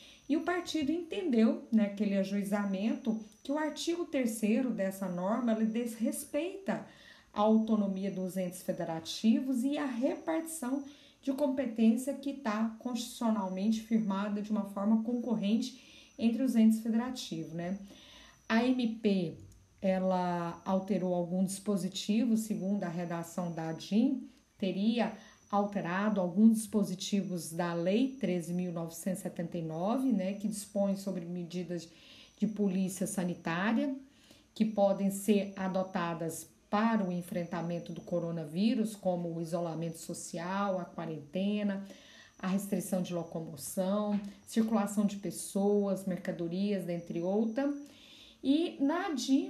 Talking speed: 110 wpm